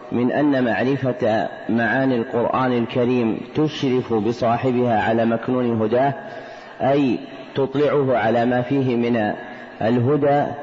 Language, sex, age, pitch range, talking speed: Arabic, male, 40-59, 120-140 Hz, 100 wpm